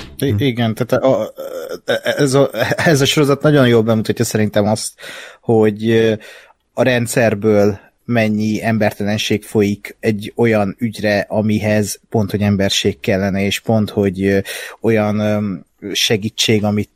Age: 30-49